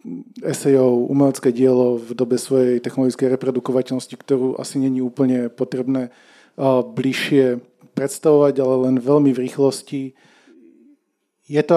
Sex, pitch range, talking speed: male, 130-145 Hz, 115 wpm